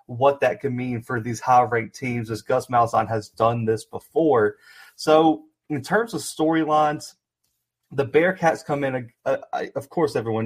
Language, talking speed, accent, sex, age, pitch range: English, 165 wpm, American, male, 30-49, 120-150 Hz